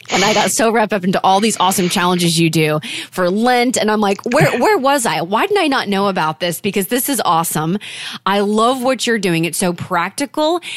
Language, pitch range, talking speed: English, 170-230 Hz, 230 wpm